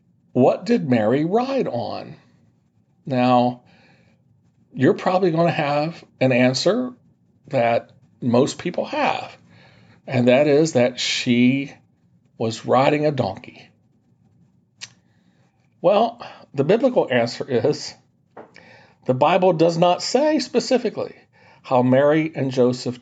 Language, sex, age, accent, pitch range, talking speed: English, male, 50-69, American, 125-180 Hz, 105 wpm